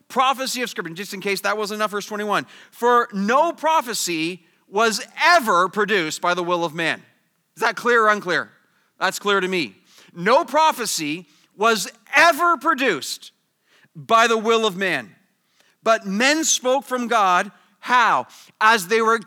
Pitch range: 180-230 Hz